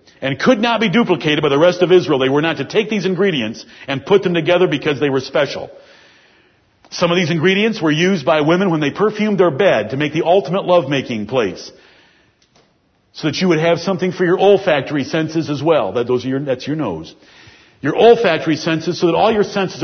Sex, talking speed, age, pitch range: male, 210 wpm, 50-69, 150-190 Hz